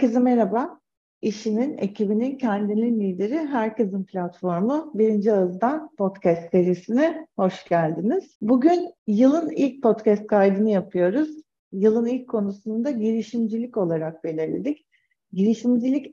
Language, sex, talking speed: Turkish, female, 105 wpm